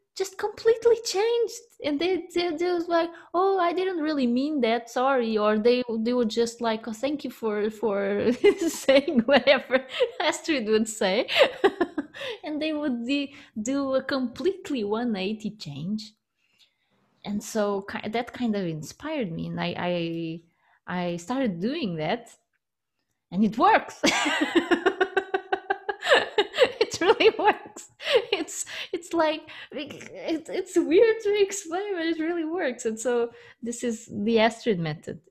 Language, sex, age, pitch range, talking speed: English, female, 20-39, 210-325 Hz, 140 wpm